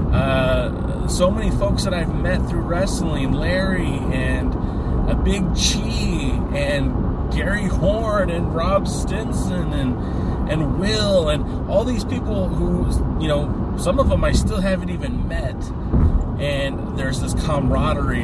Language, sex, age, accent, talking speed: English, male, 30-49, American, 140 wpm